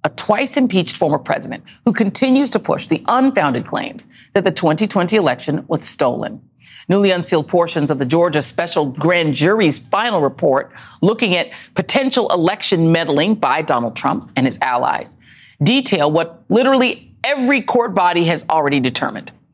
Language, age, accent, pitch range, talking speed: English, 40-59, American, 155-210 Hz, 145 wpm